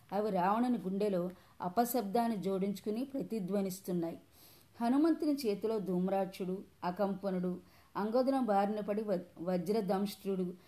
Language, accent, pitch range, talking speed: Telugu, native, 180-230 Hz, 85 wpm